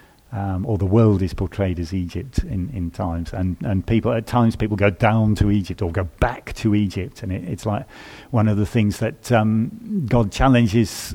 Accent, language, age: British, English, 50-69